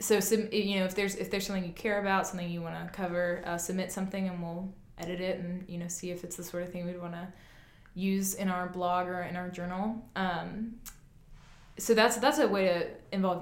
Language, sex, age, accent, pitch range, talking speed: English, female, 20-39, American, 170-195 Hz, 235 wpm